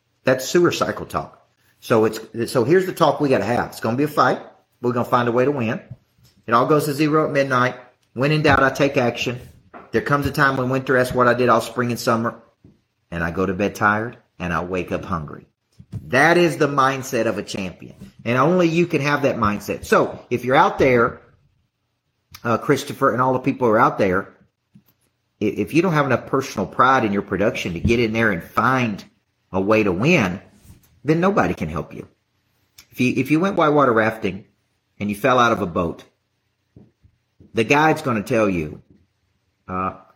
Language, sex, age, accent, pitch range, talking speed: English, male, 50-69, American, 105-135 Hz, 205 wpm